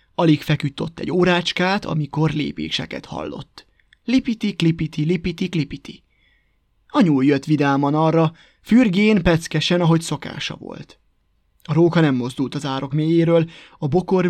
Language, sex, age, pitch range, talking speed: Hungarian, male, 20-39, 145-180 Hz, 130 wpm